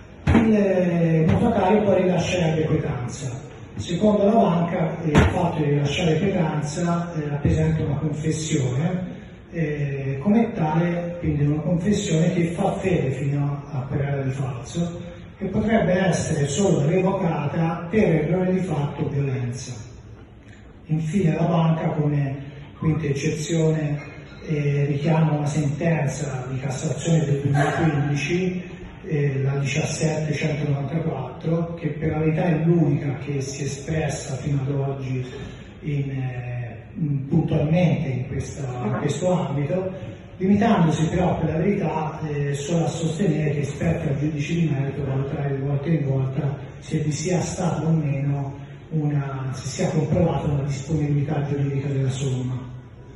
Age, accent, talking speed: 30-49, native, 130 wpm